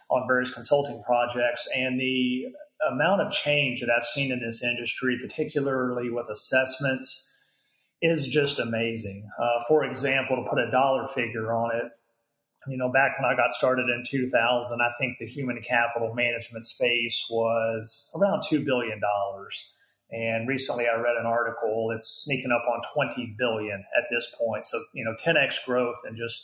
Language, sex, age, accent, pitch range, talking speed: English, male, 30-49, American, 115-135 Hz, 170 wpm